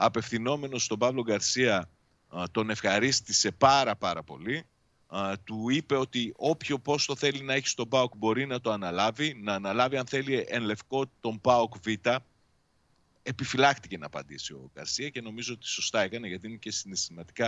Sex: male